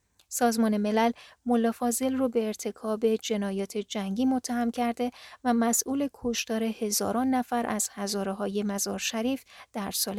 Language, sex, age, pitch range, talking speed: Persian, female, 40-59, 205-245 Hz, 130 wpm